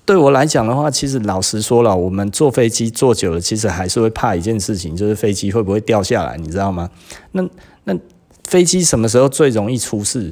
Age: 30-49